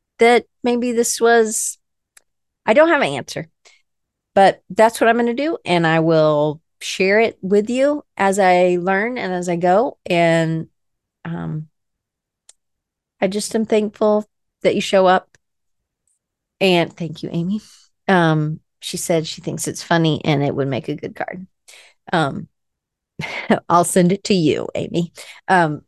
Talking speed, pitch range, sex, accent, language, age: 150 wpm, 160-215 Hz, female, American, English, 40-59